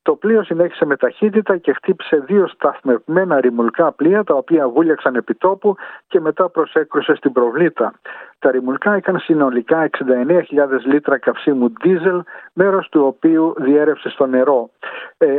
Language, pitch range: Greek, 135-175 Hz